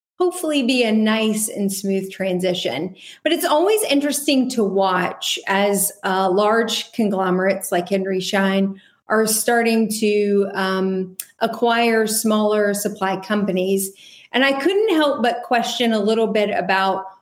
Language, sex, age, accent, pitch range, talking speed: English, female, 40-59, American, 195-230 Hz, 130 wpm